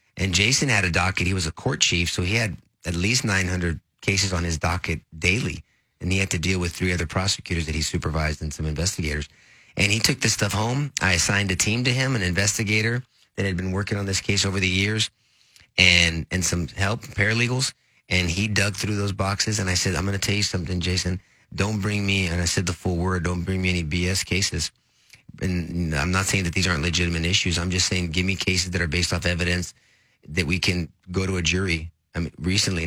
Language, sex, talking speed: English, male, 230 wpm